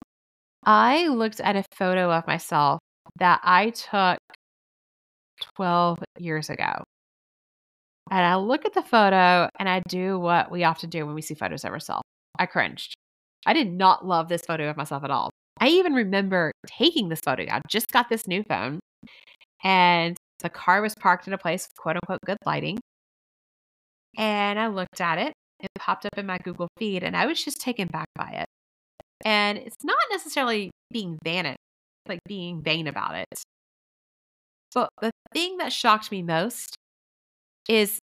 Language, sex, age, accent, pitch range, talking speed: English, female, 30-49, American, 175-290 Hz, 170 wpm